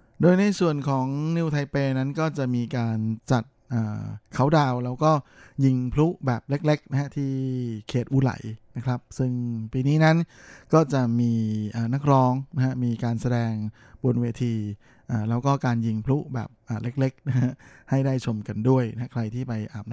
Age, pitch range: 20-39, 110-135 Hz